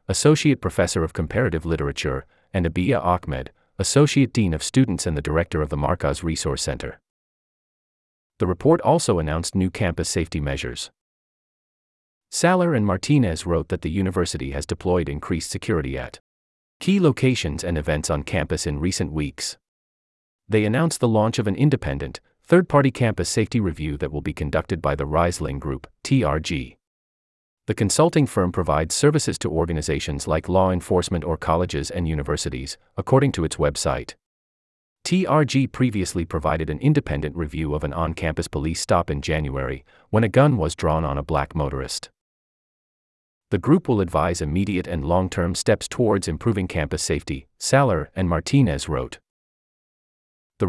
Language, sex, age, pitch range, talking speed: English, male, 30-49, 75-105 Hz, 150 wpm